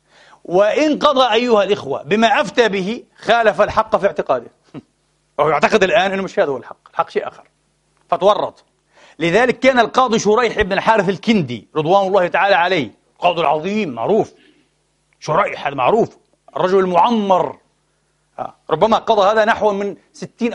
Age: 40-59